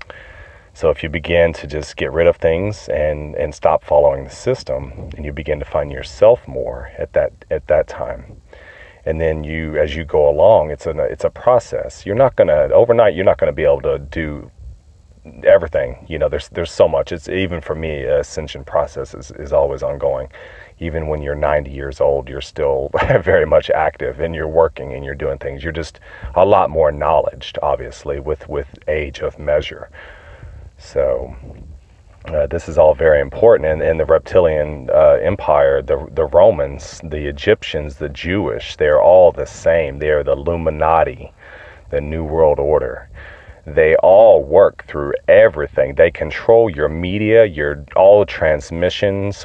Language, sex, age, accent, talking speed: English, male, 40-59, American, 175 wpm